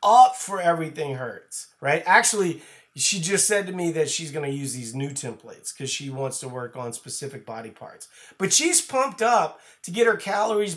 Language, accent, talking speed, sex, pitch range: English, American, 200 wpm, male, 155-205 Hz